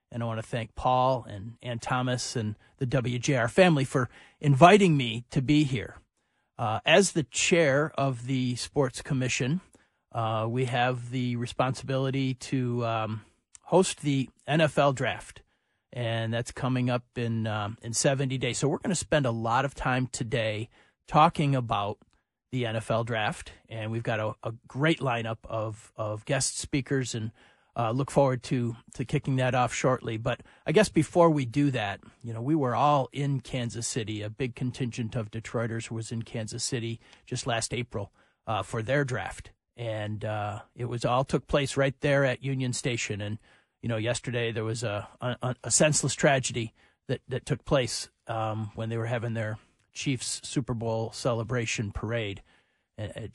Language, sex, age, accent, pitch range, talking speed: English, male, 40-59, American, 115-135 Hz, 170 wpm